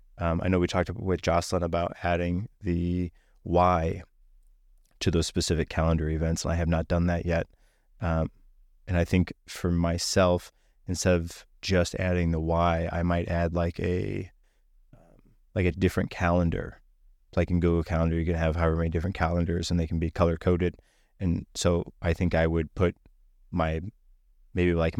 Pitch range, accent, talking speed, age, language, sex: 80-90 Hz, American, 170 wpm, 30-49, English, male